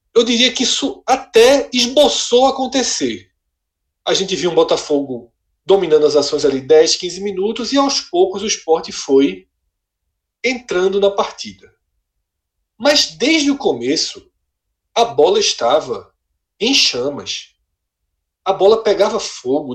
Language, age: Portuguese, 40-59